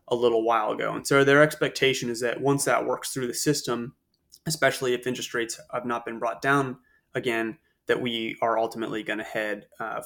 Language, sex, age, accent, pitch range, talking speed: English, male, 20-39, American, 120-140 Hz, 205 wpm